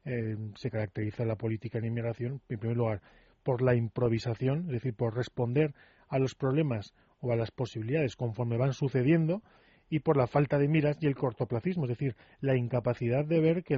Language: Spanish